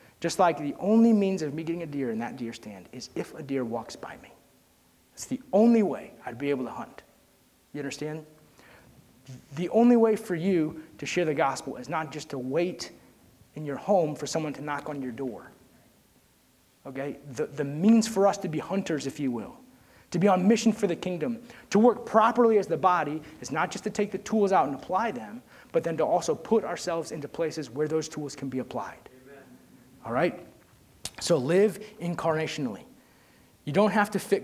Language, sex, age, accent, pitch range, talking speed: English, male, 30-49, American, 135-180 Hz, 200 wpm